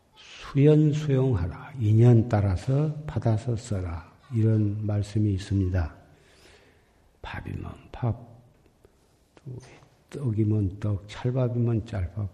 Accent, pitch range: native, 100-130 Hz